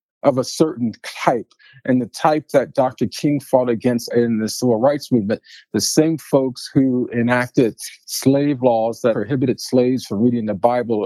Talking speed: 170 wpm